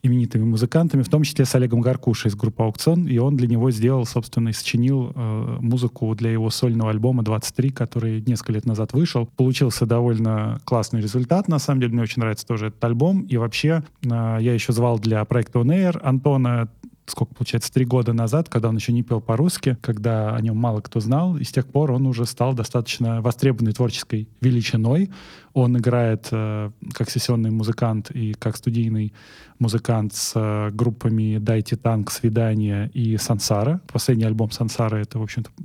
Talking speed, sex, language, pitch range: 175 wpm, male, Russian, 115-140 Hz